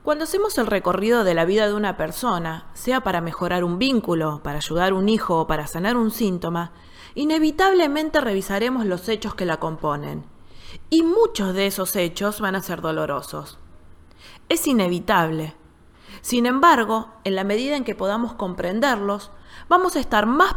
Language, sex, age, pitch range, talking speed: Spanish, female, 20-39, 170-255 Hz, 165 wpm